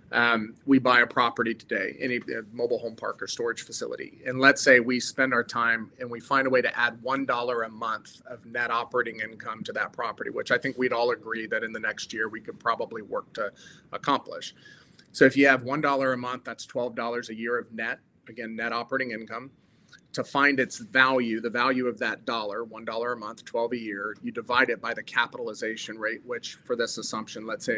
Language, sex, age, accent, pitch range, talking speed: English, male, 40-59, American, 115-135 Hz, 215 wpm